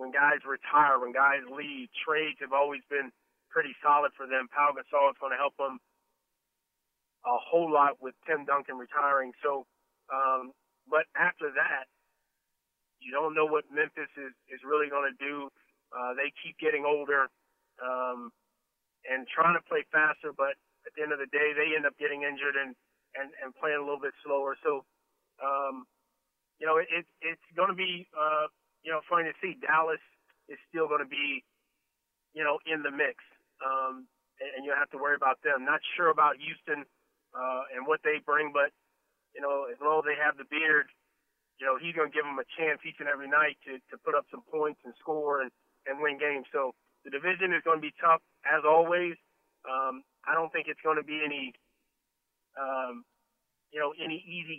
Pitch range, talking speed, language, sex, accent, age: 135-155 Hz, 195 wpm, English, male, American, 30-49